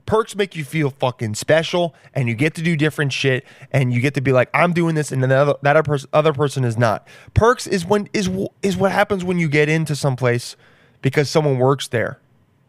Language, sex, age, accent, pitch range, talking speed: English, male, 20-39, American, 125-155 Hz, 230 wpm